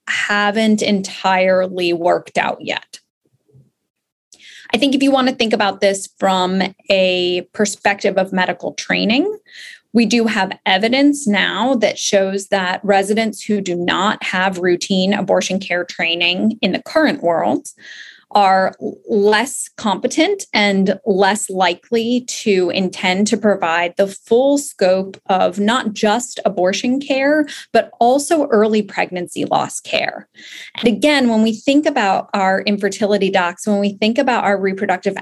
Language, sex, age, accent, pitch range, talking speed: English, female, 20-39, American, 185-230 Hz, 135 wpm